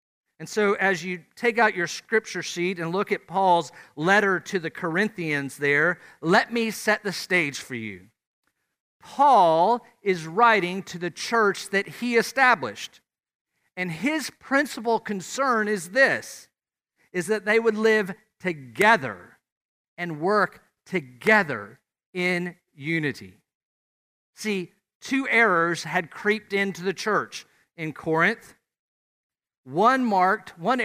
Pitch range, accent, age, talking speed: 165-215 Hz, American, 50-69, 125 wpm